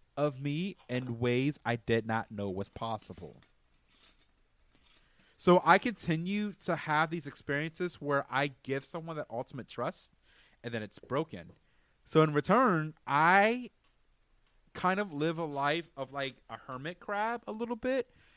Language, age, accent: English, 30-49, American